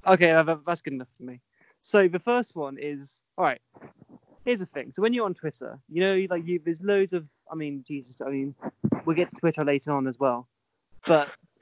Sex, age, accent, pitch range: male, 20-39, British, 130-165 Hz